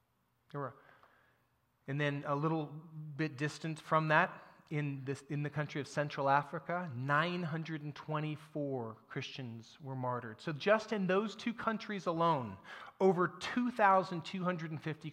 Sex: male